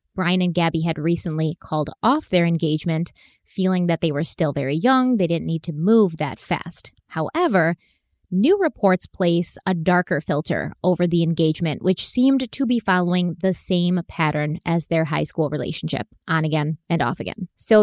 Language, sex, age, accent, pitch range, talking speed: English, female, 20-39, American, 165-205 Hz, 175 wpm